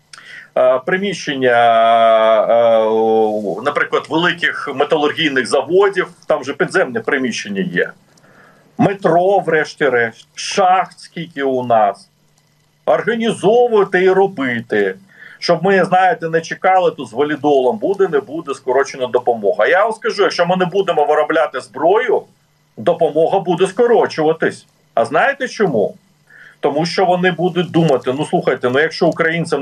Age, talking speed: 40-59, 115 wpm